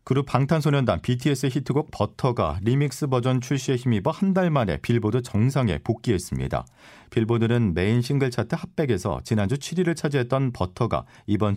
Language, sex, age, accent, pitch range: Korean, male, 40-59, native, 95-130 Hz